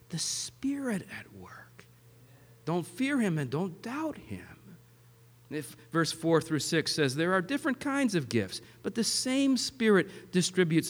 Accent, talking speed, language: American, 155 wpm, English